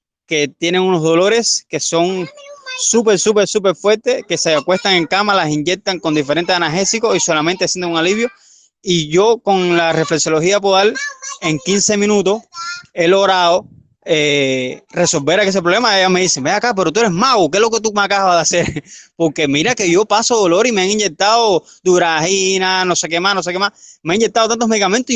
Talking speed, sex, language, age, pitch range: 195 wpm, male, Spanish, 20-39, 160-200 Hz